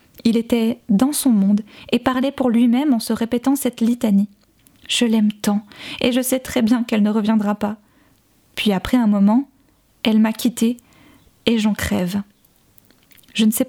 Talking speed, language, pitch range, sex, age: 180 wpm, French, 215-255 Hz, female, 20-39